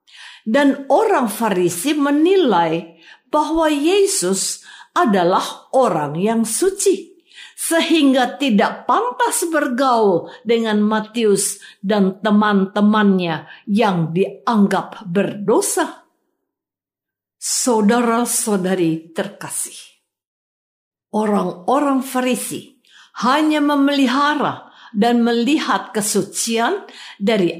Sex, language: female, Indonesian